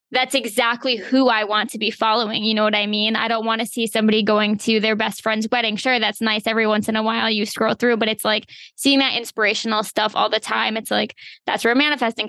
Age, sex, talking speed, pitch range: 20-39, female, 250 wpm, 215-235 Hz